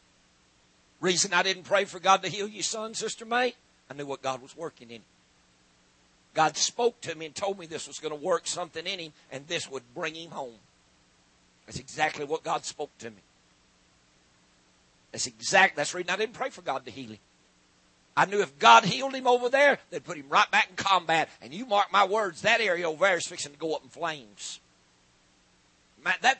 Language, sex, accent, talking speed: English, male, American, 205 wpm